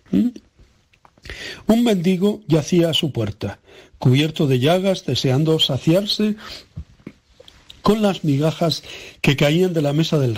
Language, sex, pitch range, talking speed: Spanish, male, 130-185 Hz, 115 wpm